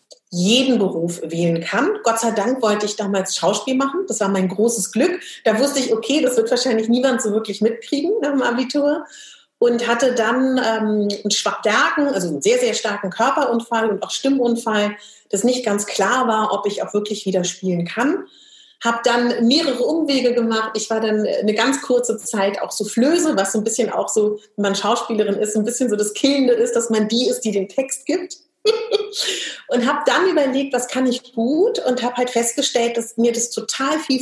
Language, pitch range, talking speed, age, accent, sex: German, 215-260 Hz, 200 wpm, 30-49, German, female